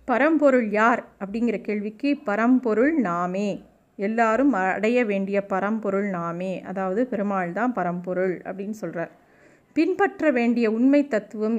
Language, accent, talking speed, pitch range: Tamil, native, 110 wpm, 205-260 Hz